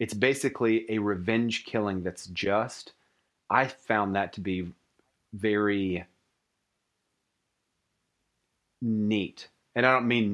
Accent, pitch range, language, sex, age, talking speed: American, 95-115 Hz, English, male, 30-49, 105 wpm